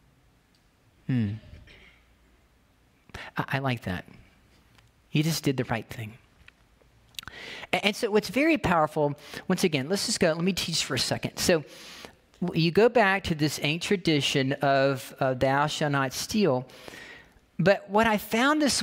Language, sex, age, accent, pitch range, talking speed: English, male, 40-59, American, 155-200 Hz, 150 wpm